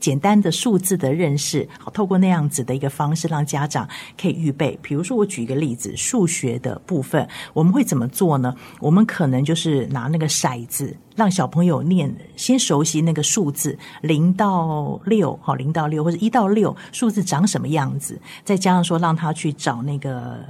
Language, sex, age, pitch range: Chinese, female, 50-69, 145-185 Hz